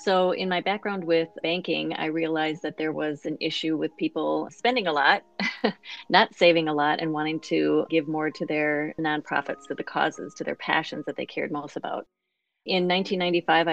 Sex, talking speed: female, 190 wpm